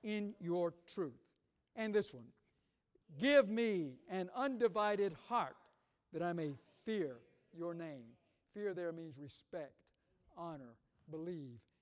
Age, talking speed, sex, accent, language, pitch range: 60-79, 115 wpm, male, American, English, 145-220 Hz